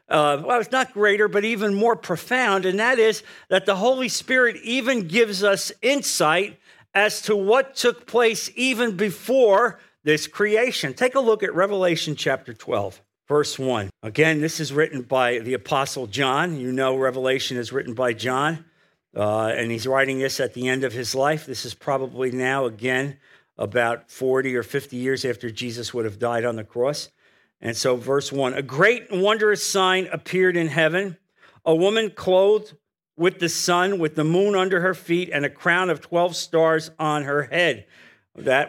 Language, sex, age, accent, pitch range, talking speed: English, male, 50-69, American, 135-195 Hz, 180 wpm